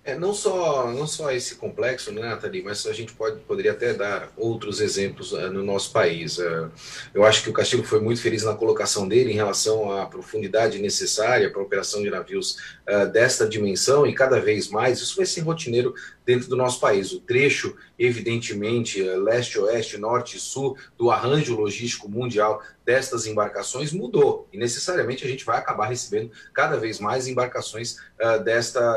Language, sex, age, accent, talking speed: Portuguese, male, 30-49, Brazilian, 180 wpm